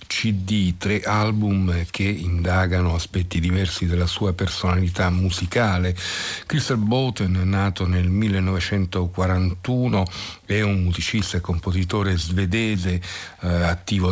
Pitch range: 90-105 Hz